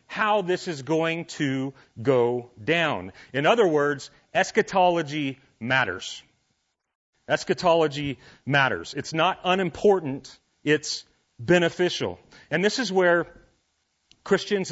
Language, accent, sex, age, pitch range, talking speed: English, American, male, 40-59, 135-175 Hz, 100 wpm